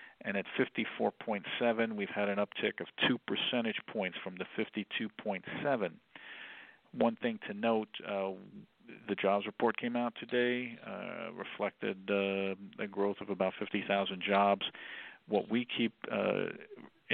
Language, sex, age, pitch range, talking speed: English, male, 50-69, 95-105 Hz, 135 wpm